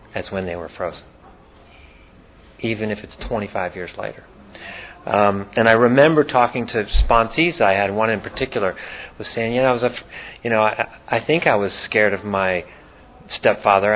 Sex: male